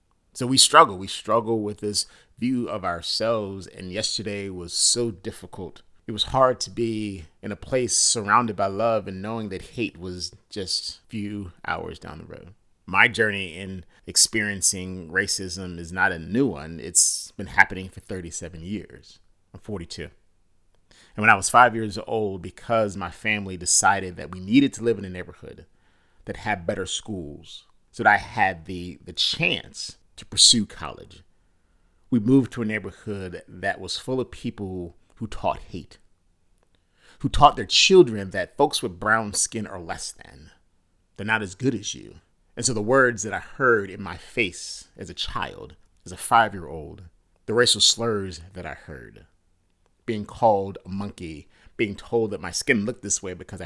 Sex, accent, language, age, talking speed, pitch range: male, American, English, 30-49, 170 wpm, 90-110 Hz